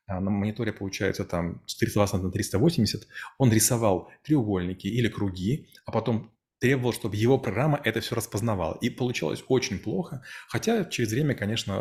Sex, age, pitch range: male, 30-49, 100-125 Hz